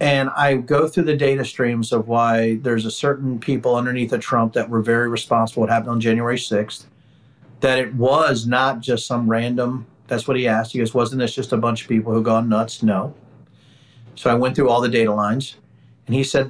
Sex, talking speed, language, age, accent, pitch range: male, 220 wpm, English, 40-59, American, 120-145 Hz